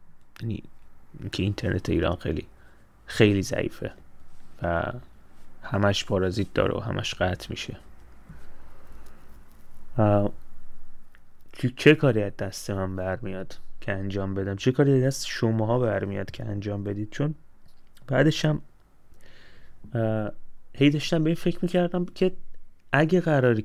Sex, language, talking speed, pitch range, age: male, Persian, 105 wpm, 100-130 Hz, 30-49